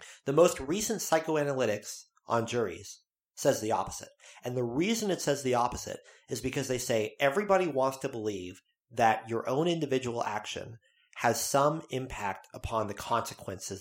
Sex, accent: male, American